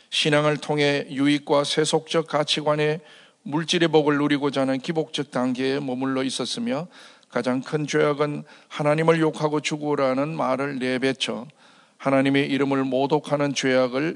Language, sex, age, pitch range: Korean, male, 40-59, 130-155 Hz